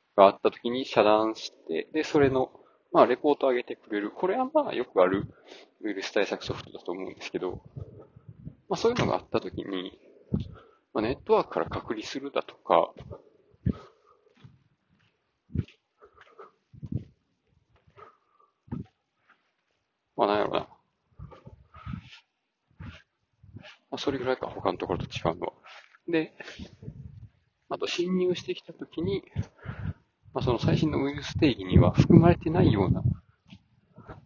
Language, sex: Japanese, male